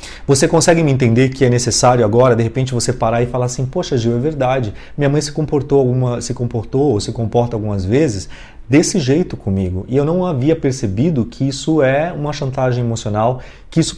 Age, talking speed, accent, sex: 30-49, 195 wpm, Brazilian, male